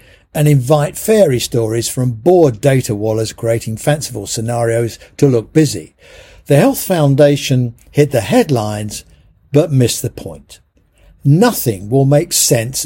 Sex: male